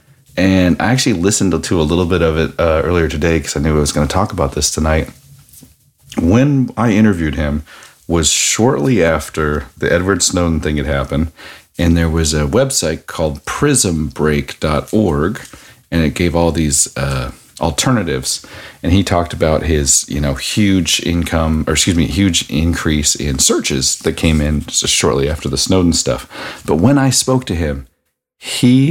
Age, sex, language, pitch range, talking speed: 40-59, male, English, 80-95 Hz, 170 wpm